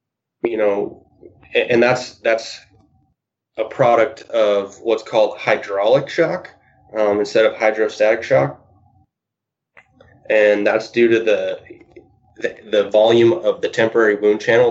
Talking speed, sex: 120 wpm, male